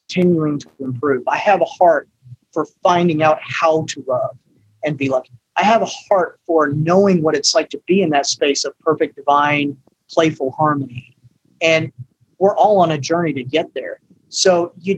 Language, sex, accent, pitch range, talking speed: English, male, American, 140-185 Hz, 185 wpm